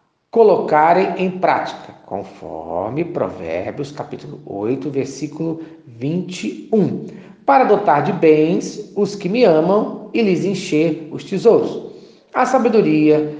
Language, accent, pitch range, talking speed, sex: Portuguese, Brazilian, 150-230 Hz, 110 wpm, male